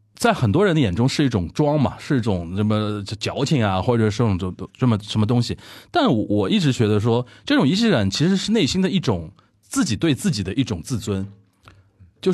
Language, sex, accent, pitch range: Chinese, male, native, 100-140 Hz